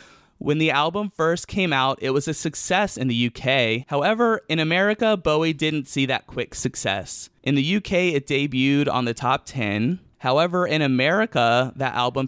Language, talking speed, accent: English, 175 wpm, American